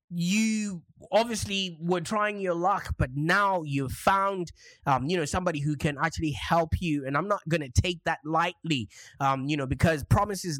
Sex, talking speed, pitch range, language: male, 180 wpm, 145-185 Hz, English